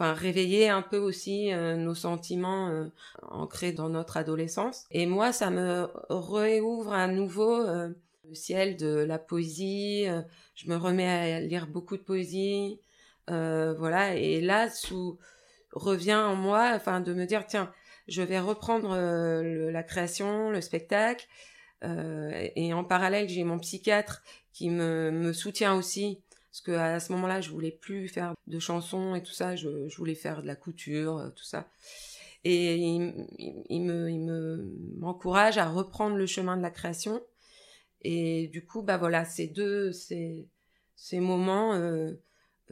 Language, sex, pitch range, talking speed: French, female, 170-200 Hz, 165 wpm